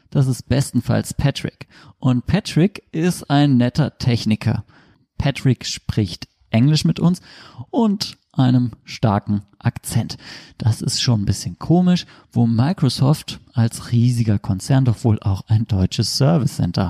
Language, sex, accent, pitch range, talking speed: German, male, German, 110-140 Hz, 130 wpm